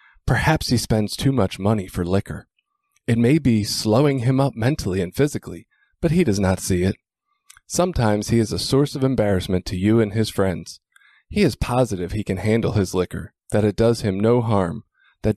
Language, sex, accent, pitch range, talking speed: English, male, American, 100-130 Hz, 195 wpm